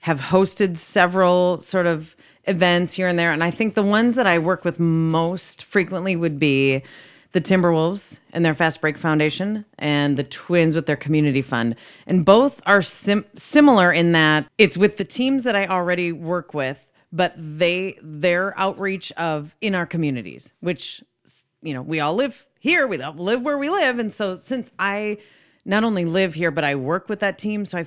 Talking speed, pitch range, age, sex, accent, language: 190 wpm, 155-195 Hz, 30-49, female, American, English